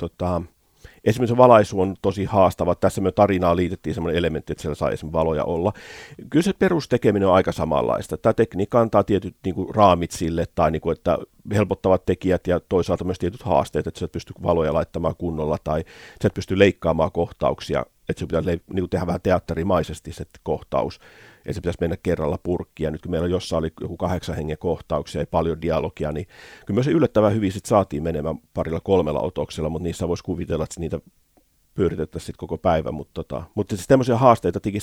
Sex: male